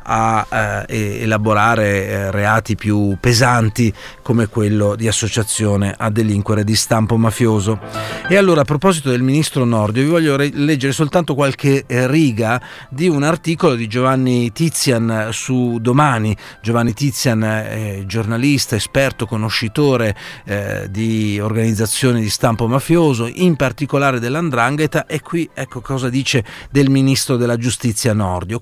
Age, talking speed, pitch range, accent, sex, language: 40-59, 135 wpm, 110-140 Hz, native, male, Italian